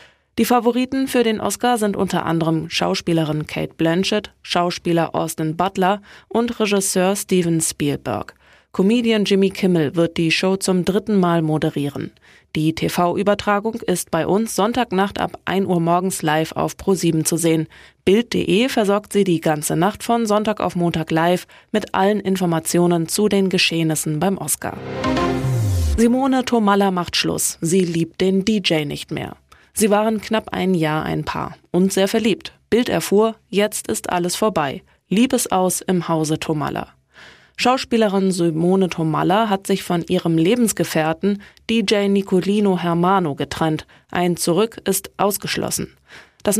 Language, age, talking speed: German, 20-39, 140 wpm